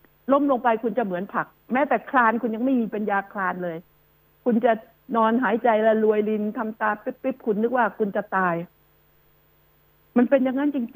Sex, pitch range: female, 215-265 Hz